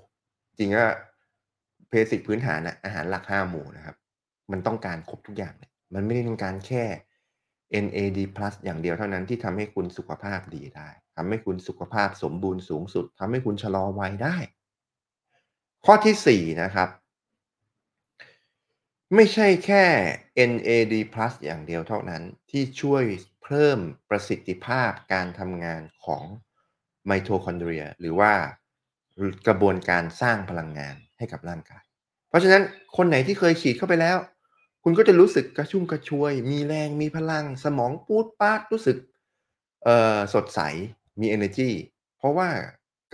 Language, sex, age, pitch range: Thai, male, 30-49, 95-145 Hz